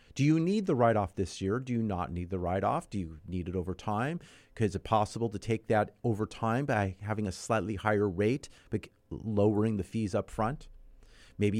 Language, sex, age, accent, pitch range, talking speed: English, male, 40-59, American, 105-160 Hz, 205 wpm